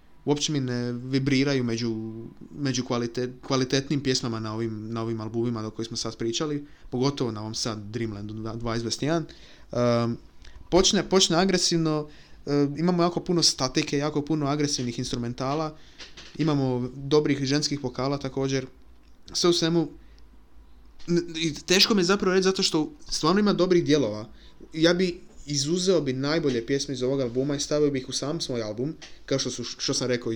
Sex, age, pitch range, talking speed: male, 20-39, 115-150 Hz, 155 wpm